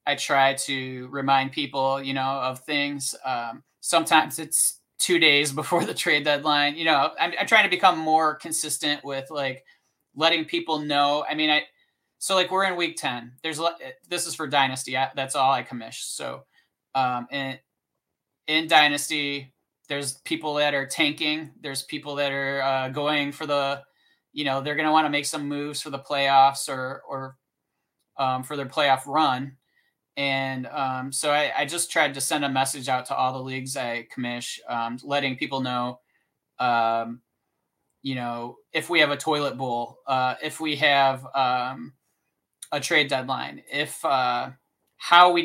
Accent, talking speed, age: American, 170 wpm, 20-39